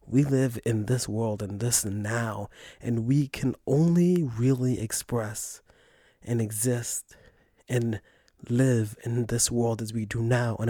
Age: 20-39